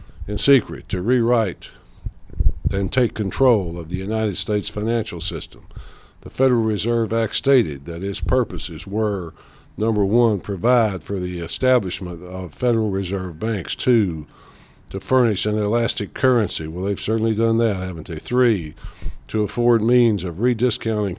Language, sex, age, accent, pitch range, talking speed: English, male, 60-79, American, 90-115 Hz, 145 wpm